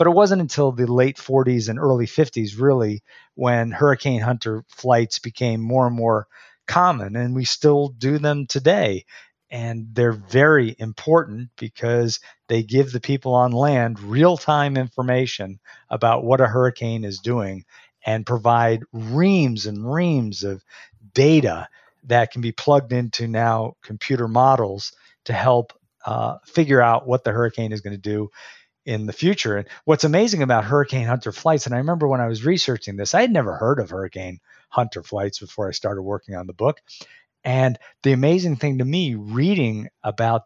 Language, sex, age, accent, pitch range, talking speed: English, male, 50-69, American, 115-150 Hz, 170 wpm